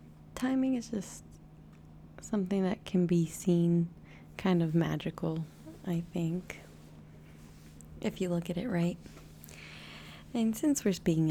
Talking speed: 120 wpm